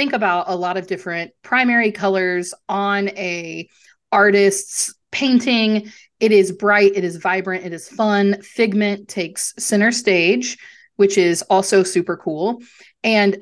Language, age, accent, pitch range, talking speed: English, 30-49, American, 175-215 Hz, 140 wpm